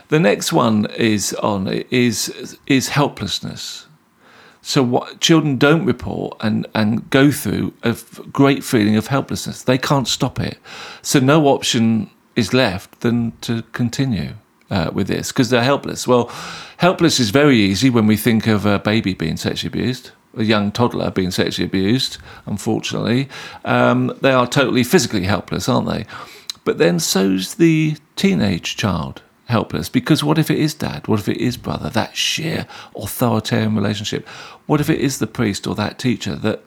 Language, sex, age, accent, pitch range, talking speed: English, male, 40-59, British, 105-135 Hz, 165 wpm